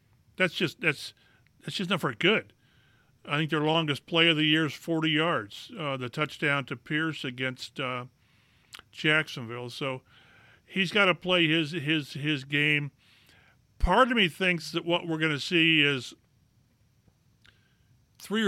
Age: 40-59